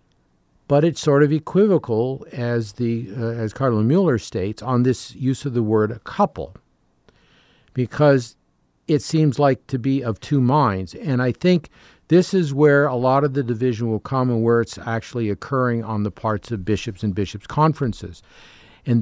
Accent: American